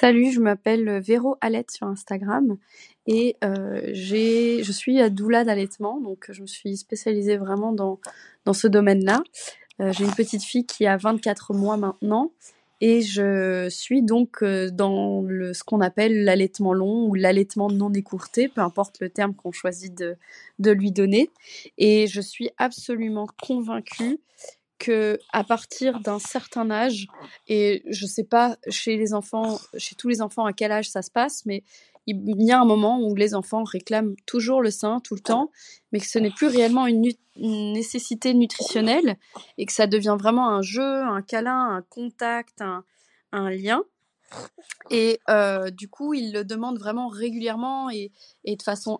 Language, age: French, 20-39